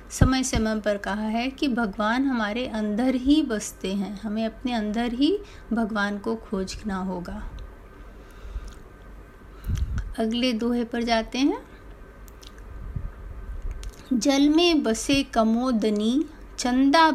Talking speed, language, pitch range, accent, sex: 105 wpm, Hindi, 205-270 Hz, native, female